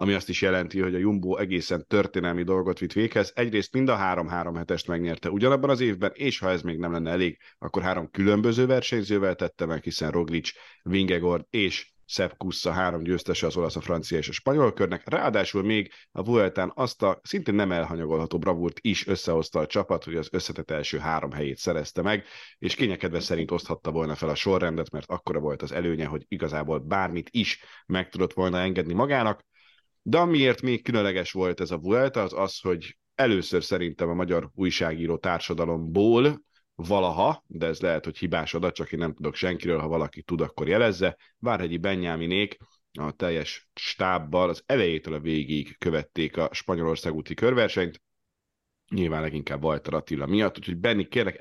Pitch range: 80-95 Hz